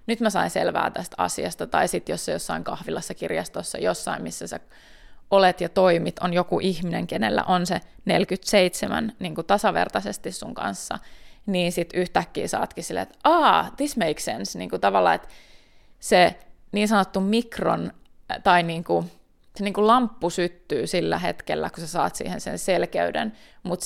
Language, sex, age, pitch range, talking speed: Finnish, female, 20-39, 170-200 Hz, 165 wpm